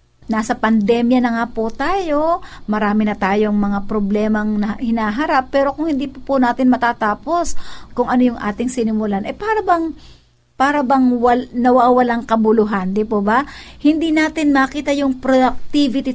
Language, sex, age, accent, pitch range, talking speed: Filipino, female, 50-69, native, 215-290 Hz, 155 wpm